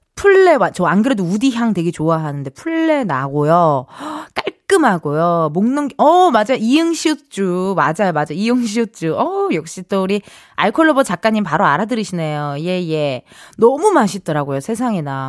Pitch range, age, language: 175-295 Hz, 20-39, Korean